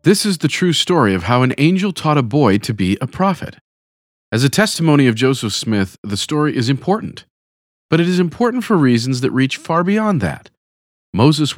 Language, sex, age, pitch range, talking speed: English, male, 40-59, 110-160 Hz, 195 wpm